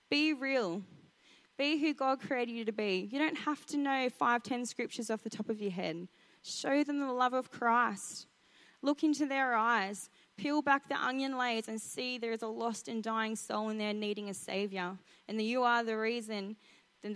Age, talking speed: 20-39, 205 wpm